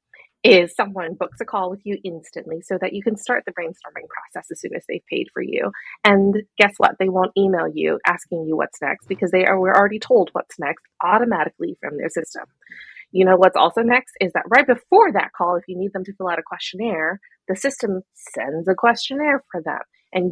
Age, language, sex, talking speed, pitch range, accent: 30-49, English, female, 220 wpm, 180-235 Hz, American